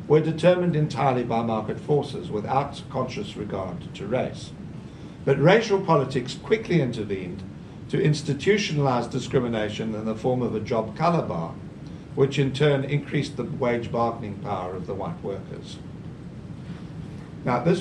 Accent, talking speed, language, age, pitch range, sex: British, 140 wpm, English, 60-79, 120-170 Hz, male